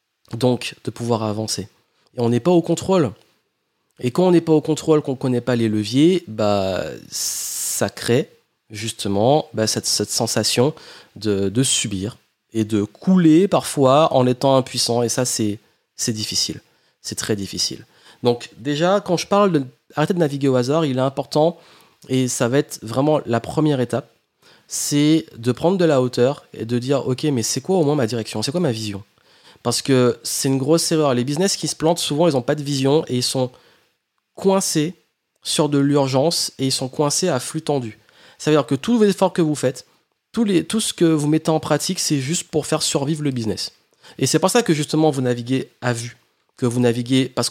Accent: French